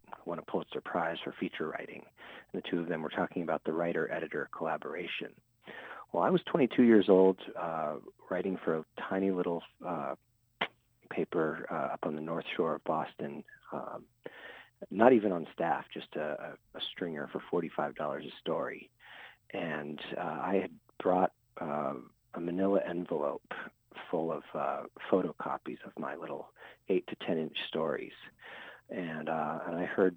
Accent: American